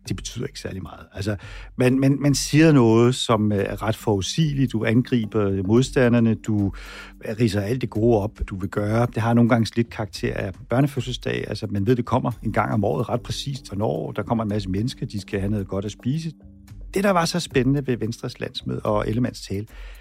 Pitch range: 105-140 Hz